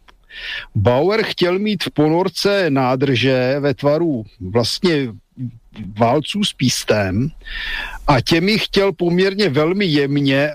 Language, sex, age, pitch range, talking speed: Slovak, male, 50-69, 130-165 Hz, 100 wpm